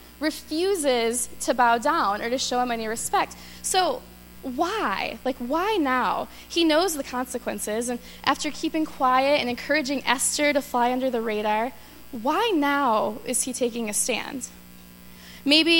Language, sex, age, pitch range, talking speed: English, female, 10-29, 220-275 Hz, 150 wpm